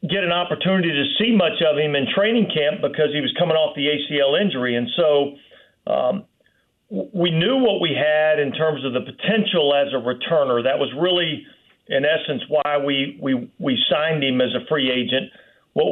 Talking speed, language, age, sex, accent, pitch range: 190 wpm, English, 40-59, male, American, 140-175 Hz